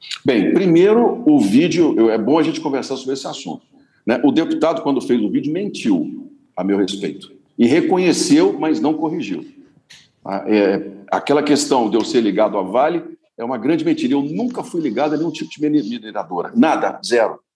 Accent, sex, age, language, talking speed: Brazilian, male, 60-79, Portuguese, 175 wpm